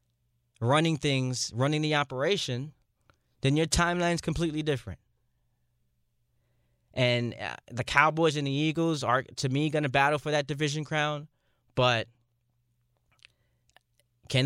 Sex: male